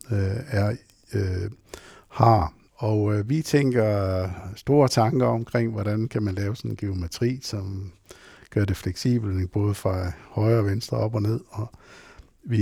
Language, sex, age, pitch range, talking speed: Danish, male, 60-79, 100-115 Hz, 145 wpm